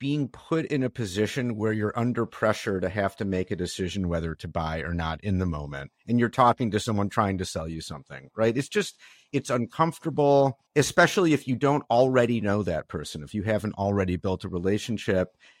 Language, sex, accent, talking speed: English, male, American, 205 wpm